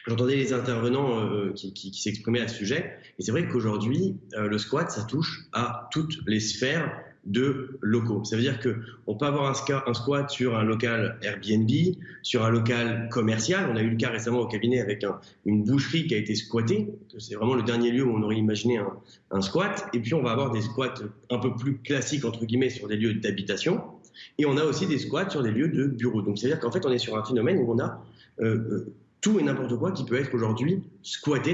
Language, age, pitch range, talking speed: French, 30-49, 110-145 Hz, 235 wpm